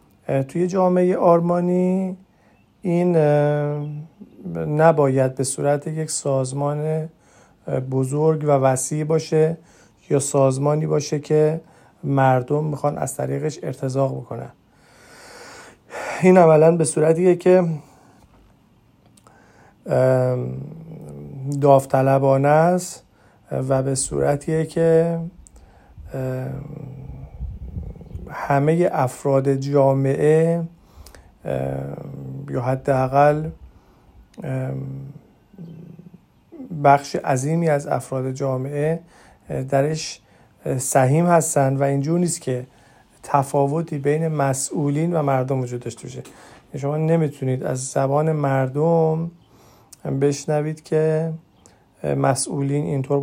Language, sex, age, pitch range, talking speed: Persian, male, 40-59, 135-160 Hz, 75 wpm